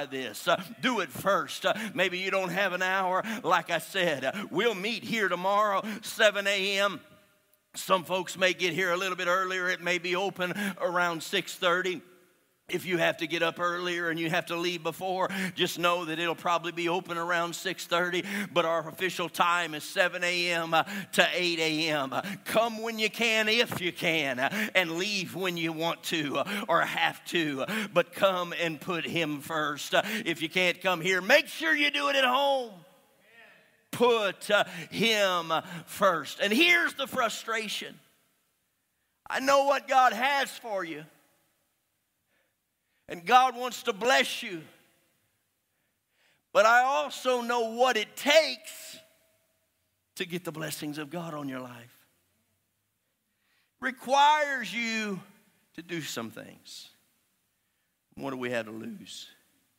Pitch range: 165-220 Hz